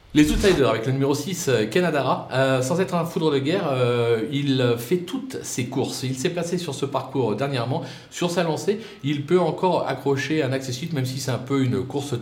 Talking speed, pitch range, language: 215 wpm, 125-160 Hz, French